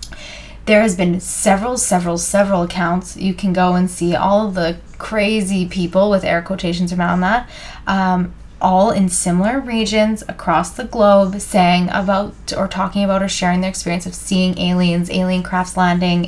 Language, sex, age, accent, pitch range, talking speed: English, female, 20-39, American, 175-205 Hz, 160 wpm